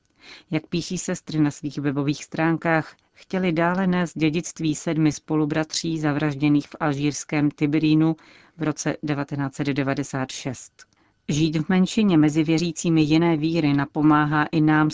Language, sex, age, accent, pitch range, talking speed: Czech, female, 40-59, native, 145-165 Hz, 120 wpm